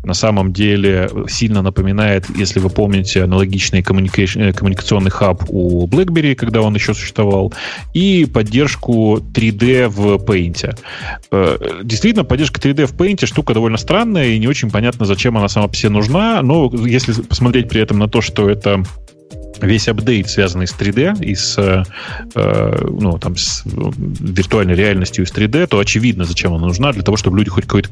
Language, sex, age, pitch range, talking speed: Russian, male, 30-49, 95-120 Hz, 165 wpm